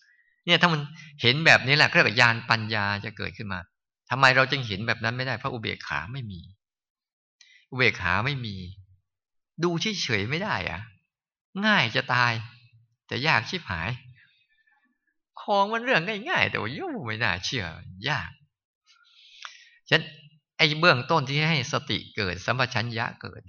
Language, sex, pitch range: Thai, male, 110-150 Hz